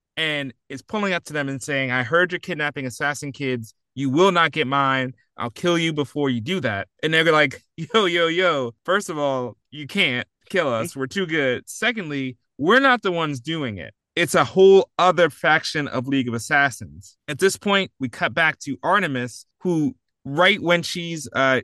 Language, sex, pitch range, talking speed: English, male, 130-170 Hz, 200 wpm